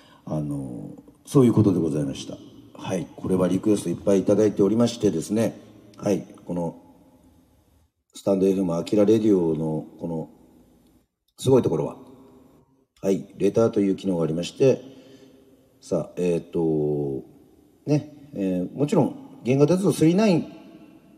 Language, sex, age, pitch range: Japanese, male, 40-59, 90-135 Hz